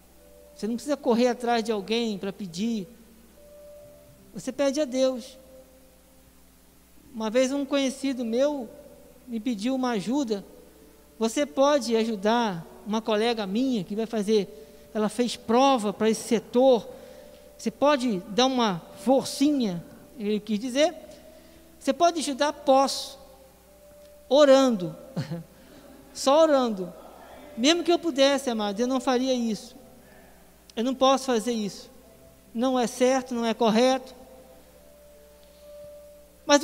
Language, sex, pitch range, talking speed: Portuguese, male, 225-290 Hz, 120 wpm